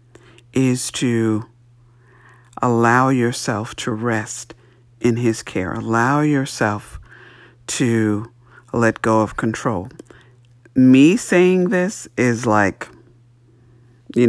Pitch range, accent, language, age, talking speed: 110-125 Hz, American, English, 50-69, 90 wpm